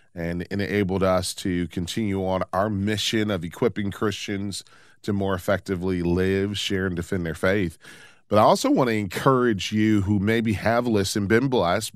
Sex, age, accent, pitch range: male, 40-59, American, 90-110 Hz